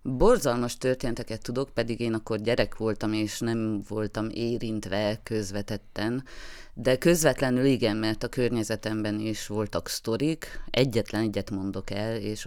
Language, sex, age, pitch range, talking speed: Hungarian, female, 30-49, 100-115 Hz, 130 wpm